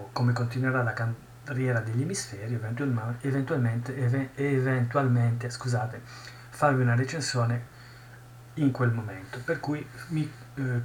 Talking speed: 105 wpm